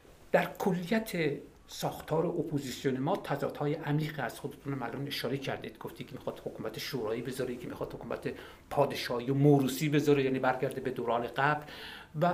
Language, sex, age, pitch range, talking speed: Persian, male, 50-69, 135-155 Hz, 160 wpm